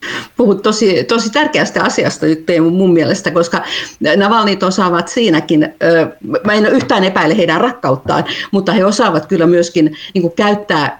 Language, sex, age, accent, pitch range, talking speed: Finnish, female, 50-69, native, 155-190 Hz, 135 wpm